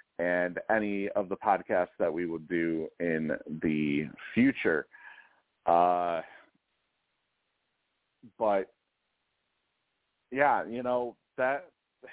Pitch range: 90-115 Hz